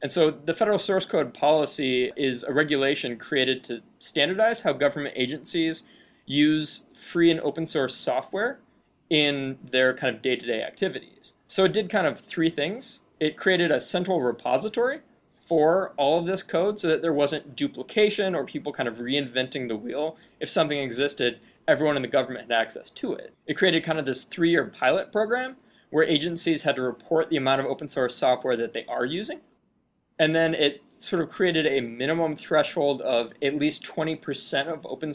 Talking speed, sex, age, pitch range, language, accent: 180 wpm, male, 20-39, 135-180 Hz, English, American